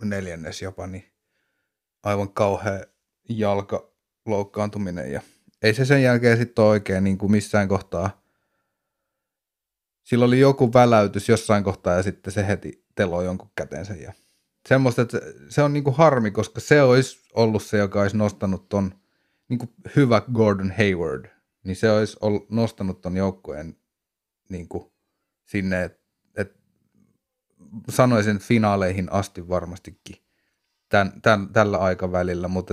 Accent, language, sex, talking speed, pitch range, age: native, Finnish, male, 125 wpm, 95-120 Hz, 30-49